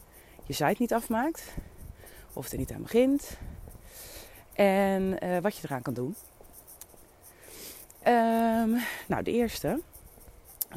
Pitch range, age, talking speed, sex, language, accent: 160-195 Hz, 30-49, 115 wpm, female, English, Dutch